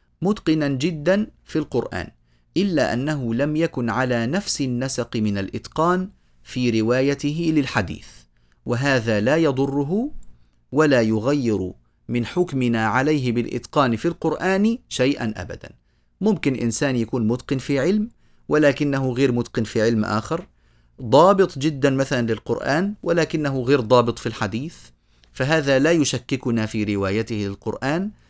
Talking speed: 120 wpm